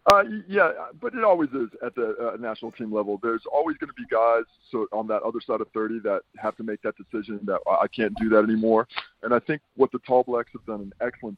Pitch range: 105-125 Hz